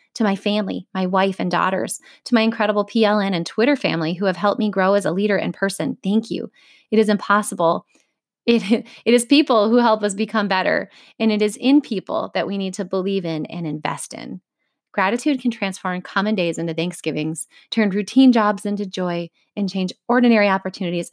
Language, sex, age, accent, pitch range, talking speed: English, female, 30-49, American, 180-225 Hz, 195 wpm